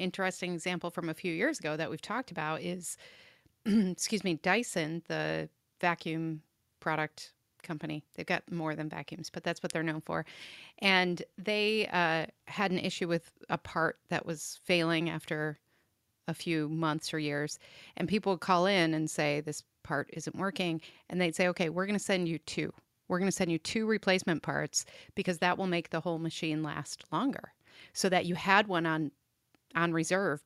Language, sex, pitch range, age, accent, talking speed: English, female, 160-185 Hz, 30-49, American, 185 wpm